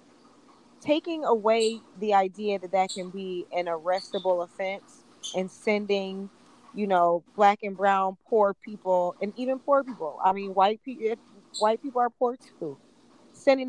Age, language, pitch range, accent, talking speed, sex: 20-39, English, 190-240 Hz, American, 145 wpm, female